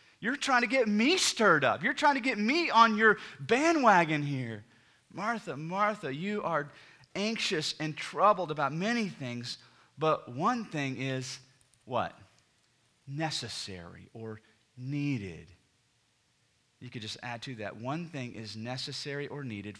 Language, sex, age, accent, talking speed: English, male, 30-49, American, 140 wpm